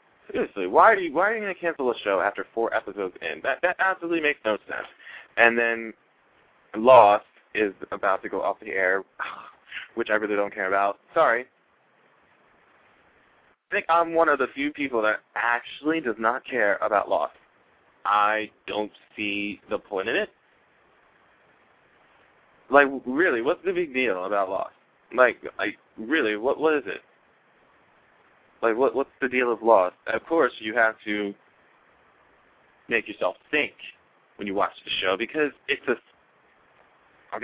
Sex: male